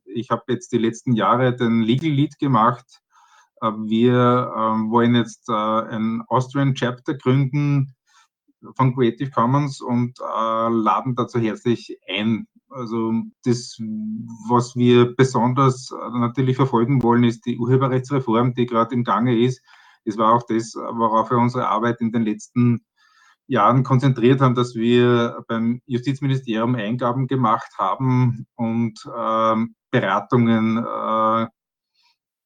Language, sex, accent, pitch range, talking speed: German, male, Austrian, 115-125 Hz, 120 wpm